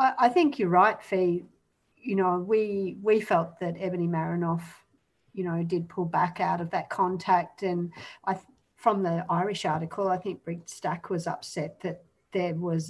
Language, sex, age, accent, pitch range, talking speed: English, female, 50-69, Australian, 175-210 Hz, 170 wpm